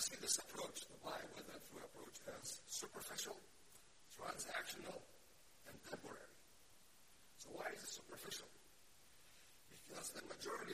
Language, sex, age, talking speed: English, male, 60-79, 105 wpm